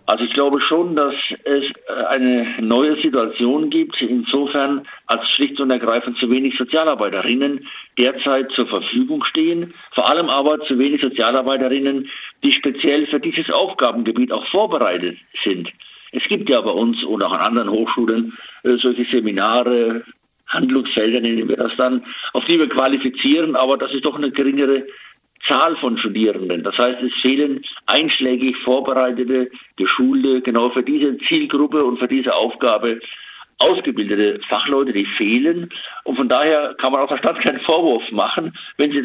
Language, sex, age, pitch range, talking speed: German, male, 60-79, 120-150 Hz, 150 wpm